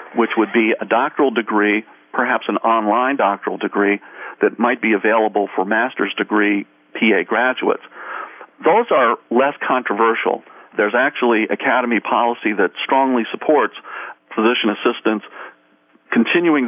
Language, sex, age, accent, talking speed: English, male, 50-69, American, 120 wpm